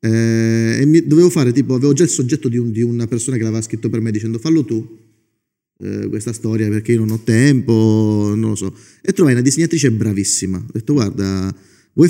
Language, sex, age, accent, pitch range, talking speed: Italian, male, 30-49, native, 105-130 Hz, 215 wpm